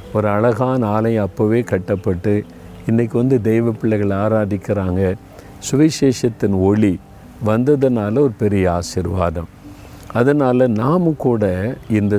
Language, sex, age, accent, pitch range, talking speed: Tamil, male, 50-69, native, 100-120 Hz, 100 wpm